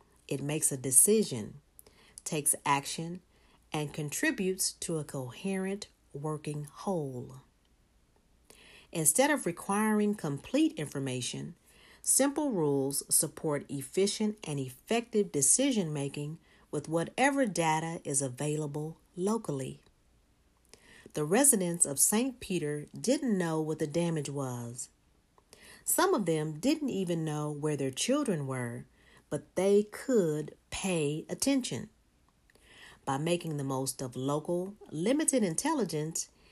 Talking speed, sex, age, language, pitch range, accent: 105 wpm, female, 40-59, English, 140-200 Hz, American